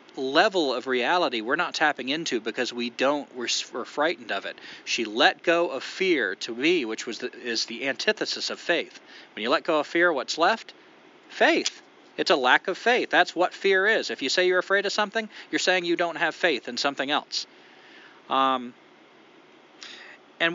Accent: American